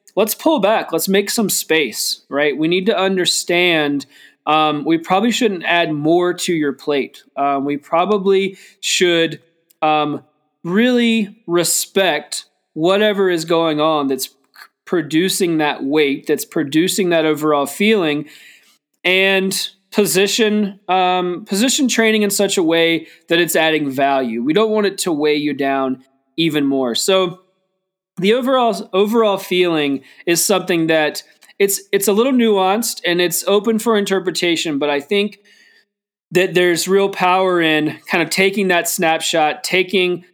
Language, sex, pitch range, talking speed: English, male, 150-195 Hz, 145 wpm